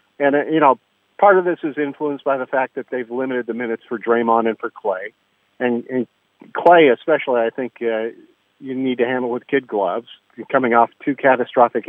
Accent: American